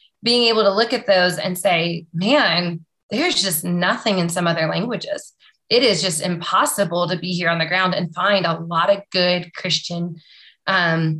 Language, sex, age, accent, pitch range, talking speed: English, female, 20-39, American, 175-205 Hz, 180 wpm